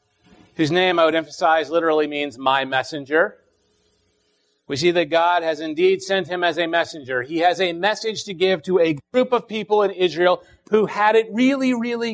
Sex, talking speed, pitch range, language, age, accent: male, 190 wpm, 155-195 Hz, English, 40-59, American